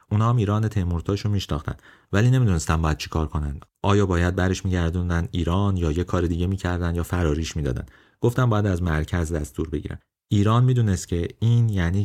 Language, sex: Persian, male